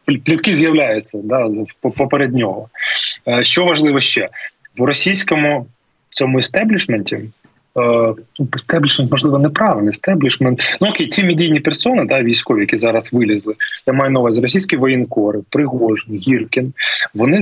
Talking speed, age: 115 wpm, 20-39